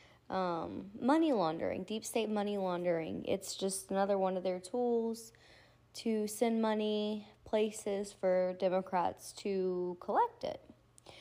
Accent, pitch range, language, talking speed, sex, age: American, 170-200 Hz, English, 125 wpm, female, 20-39